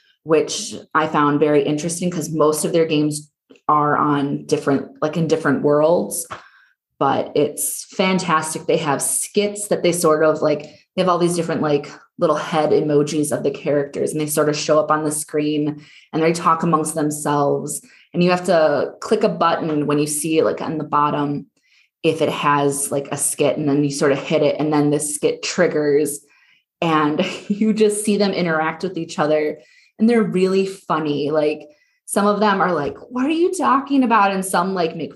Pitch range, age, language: 150-195 Hz, 20-39, English